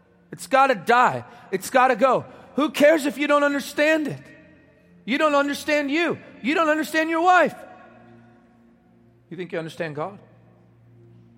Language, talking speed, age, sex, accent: English, 155 wpm, 40-59, male, American